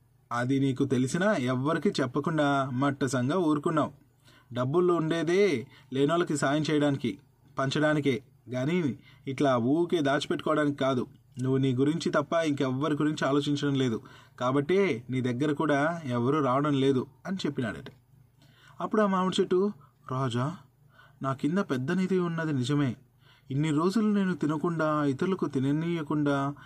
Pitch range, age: 130-155 Hz, 30-49